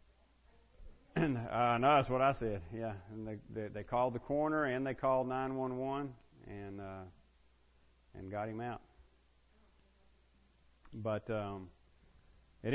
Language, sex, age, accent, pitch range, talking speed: English, male, 40-59, American, 95-135 Hz, 125 wpm